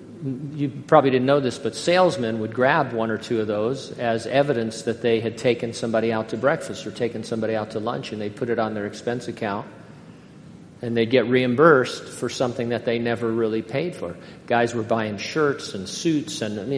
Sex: male